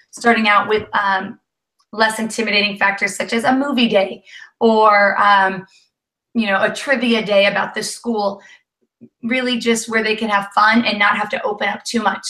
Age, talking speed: 30-49, 180 wpm